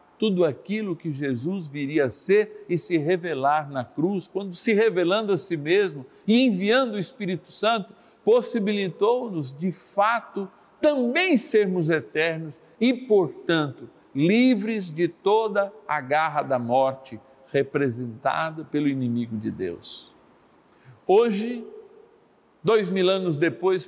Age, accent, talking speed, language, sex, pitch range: 60-79, Brazilian, 120 wpm, Portuguese, male, 160-230 Hz